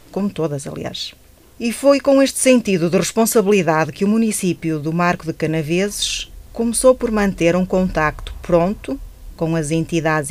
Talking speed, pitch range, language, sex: 150 wpm, 165-205 Hz, Portuguese, female